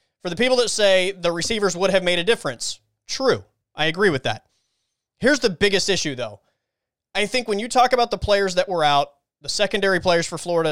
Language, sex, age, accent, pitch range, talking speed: English, male, 20-39, American, 150-200 Hz, 215 wpm